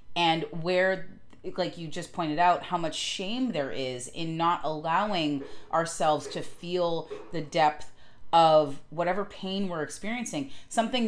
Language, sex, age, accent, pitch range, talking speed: English, female, 30-49, American, 145-195 Hz, 140 wpm